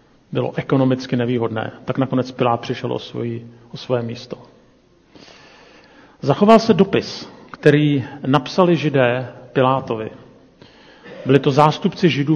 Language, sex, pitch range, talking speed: Czech, male, 125-155 Hz, 110 wpm